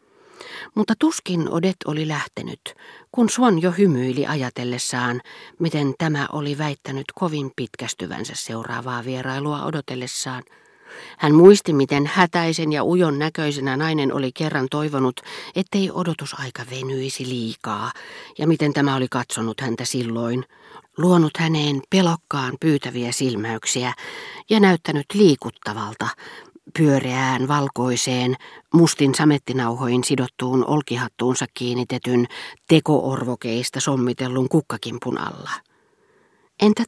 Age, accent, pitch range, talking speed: 40-59, native, 125-165 Hz, 100 wpm